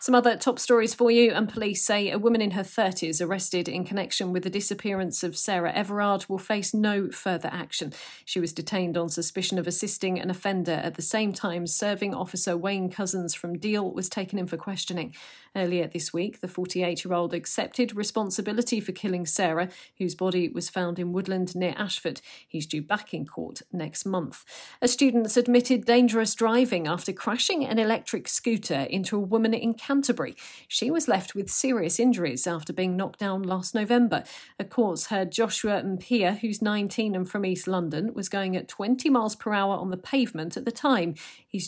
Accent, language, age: British, English, 40-59